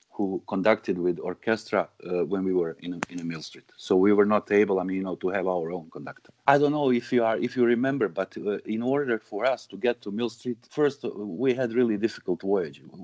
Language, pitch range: English, 100-120 Hz